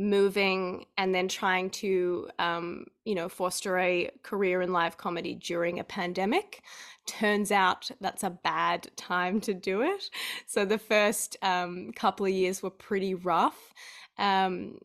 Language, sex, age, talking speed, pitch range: English, female, 10-29, 150 wpm, 185-220 Hz